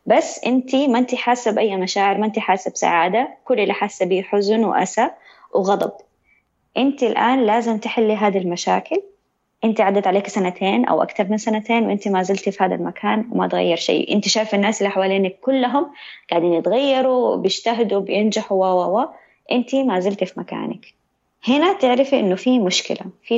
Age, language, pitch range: 20-39, Arabic, 190-235 Hz